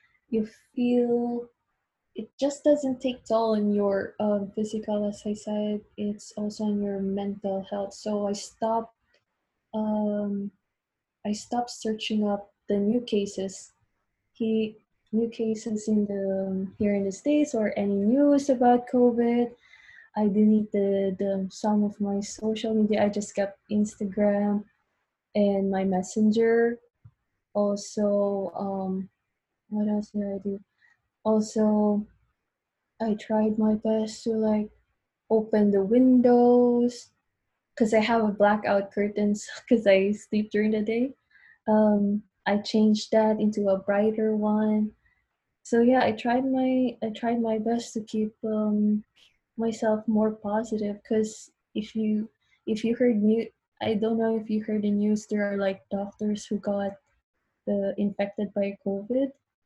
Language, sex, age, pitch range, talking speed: Filipino, female, 20-39, 205-225 Hz, 140 wpm